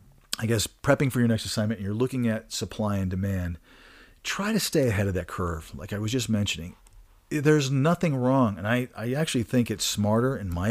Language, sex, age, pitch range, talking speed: English, male, 40-59, 100-125 Hz, 215 wpm